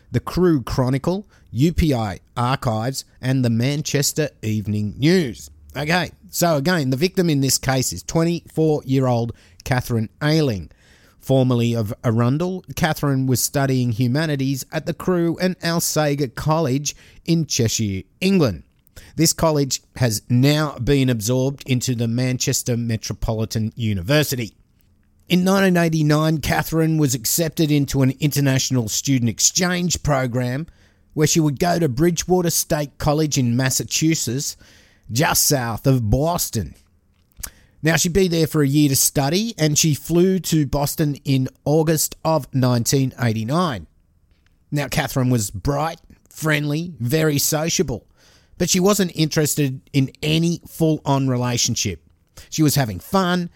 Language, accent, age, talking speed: English, Australian, 50-69, 125 wpm